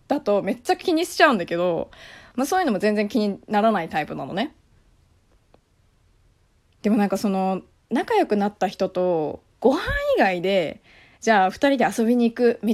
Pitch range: 180-250 Hz